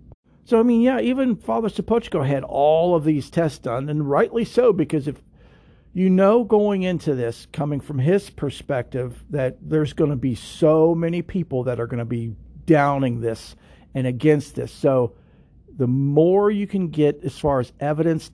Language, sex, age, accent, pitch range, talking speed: English, male, 50-69, American, 130-160 Hz, 180 wpm